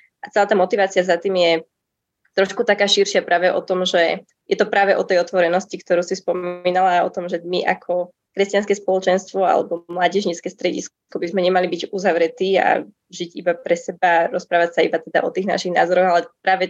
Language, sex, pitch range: Slovak, female, 165-185 Hz